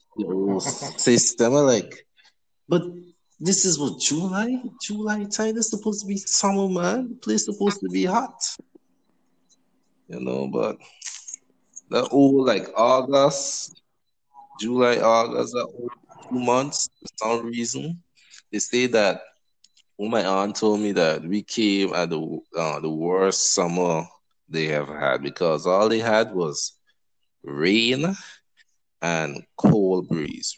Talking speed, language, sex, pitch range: 135 wpm, English, male, 85-140 Hz